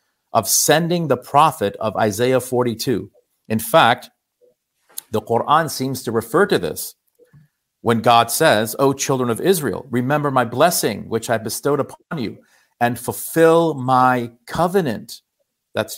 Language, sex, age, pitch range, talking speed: English, male, 50-69, 115-145 Hz, 135 wpm